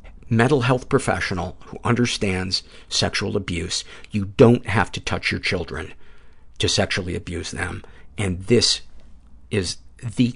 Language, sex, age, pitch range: English, male, 50-69, 90-125 Hz